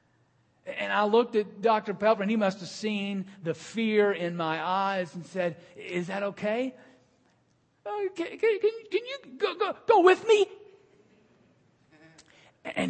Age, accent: 50-69, American